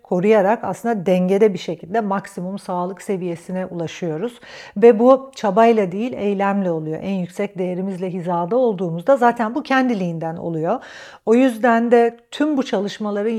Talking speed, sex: 135 wpm, female